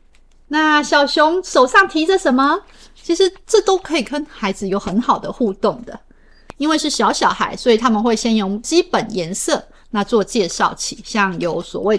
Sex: female